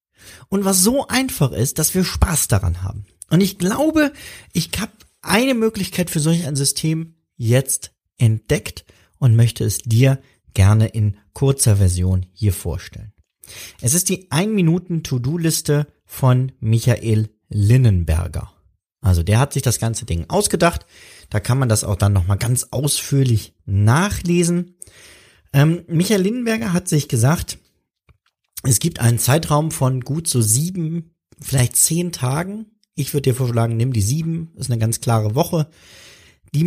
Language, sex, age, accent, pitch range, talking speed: German, male, 30-49, German, 105-165 Hz, 145 wpm